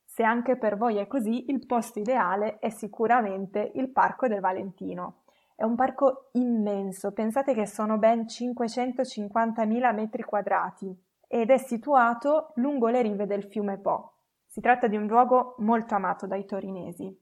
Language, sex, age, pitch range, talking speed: Italian, female, 20-39, 205-245 Hz, 155 wpm